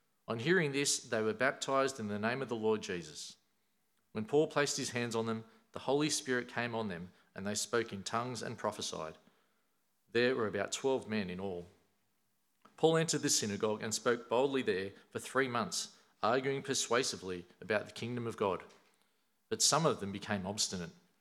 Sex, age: male, 40-59